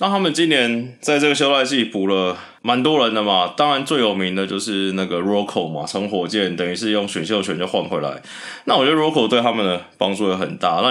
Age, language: 20-39, Chinese